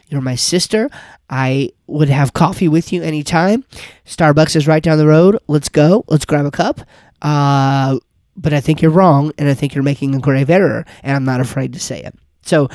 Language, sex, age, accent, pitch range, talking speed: English, male, 30-49, American, 150-195 Hz, 205 wpm